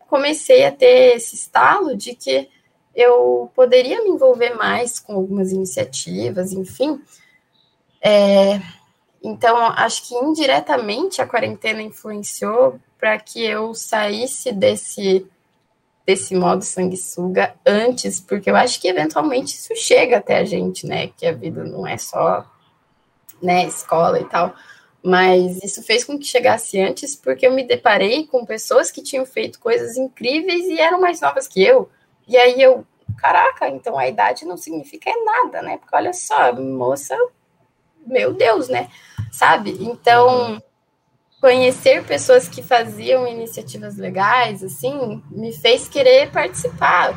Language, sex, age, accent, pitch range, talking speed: Portuguese, female, 10-29, Brazilian, 185-295 Hz, 135 wpm